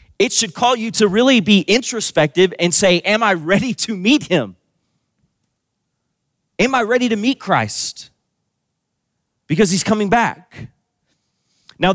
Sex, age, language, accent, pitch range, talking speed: male, 30-49, English, American, 155-210 Hz, 135 wpm